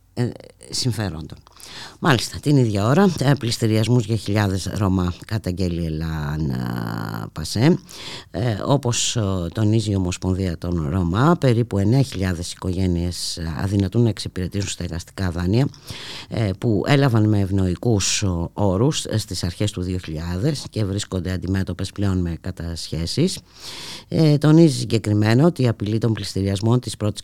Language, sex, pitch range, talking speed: Greek, female, 90-120 Hz, 115 wpm